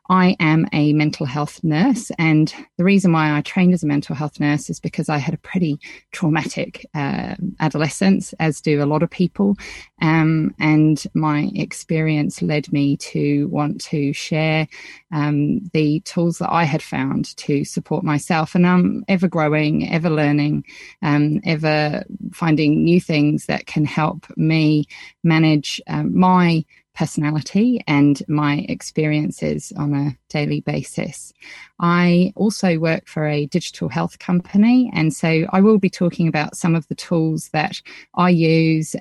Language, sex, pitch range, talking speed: English, female, 150-175 Hz, 150 wpm